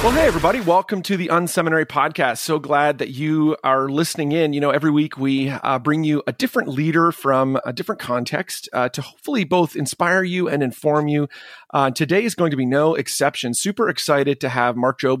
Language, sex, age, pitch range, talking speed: English, male, 40-59, 125-160 Hz, 210 wpm